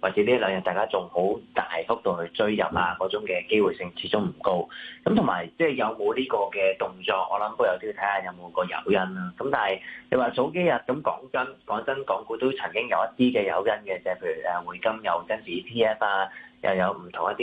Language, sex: Chinese, male